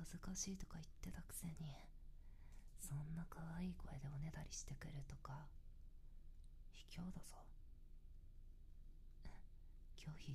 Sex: female